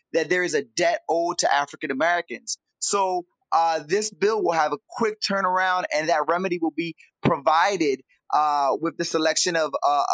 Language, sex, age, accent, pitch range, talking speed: English, male, 20-39, American, 155-210 Hz, 170 wpm